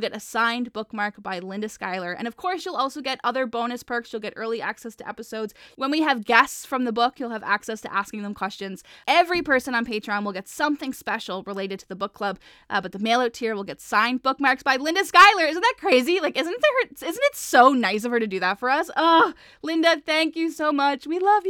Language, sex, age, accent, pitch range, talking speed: English, female, 10-29, American, 220-290 Hz, 245 wpm